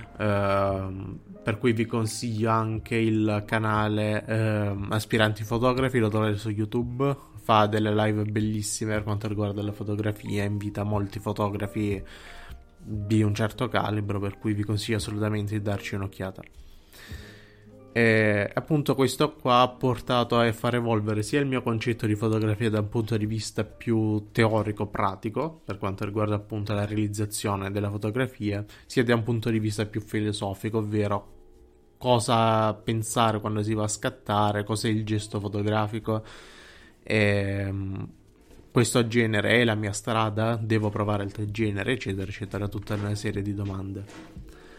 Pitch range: 105-115 Hz